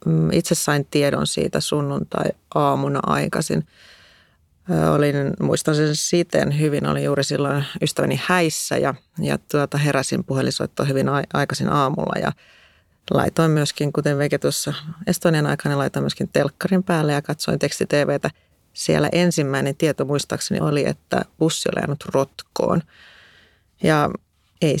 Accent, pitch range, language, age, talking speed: native, 145-160 Hz, Finnish, 30-49, 130 wpm